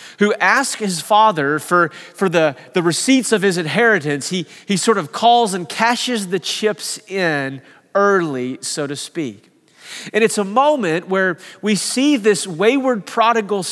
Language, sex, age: English, male, 30-49